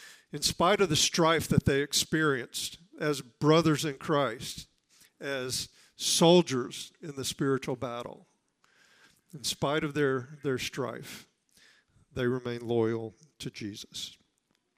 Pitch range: 130-165 Hz